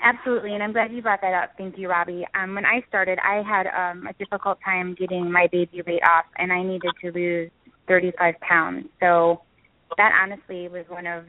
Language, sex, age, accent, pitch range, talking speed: English, female, 20-39, American, 175-200 Hz, 205 wpm